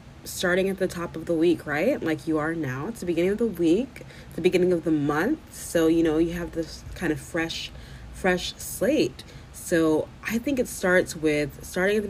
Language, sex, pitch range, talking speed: English, female, 145-170 Hz, 220 wpm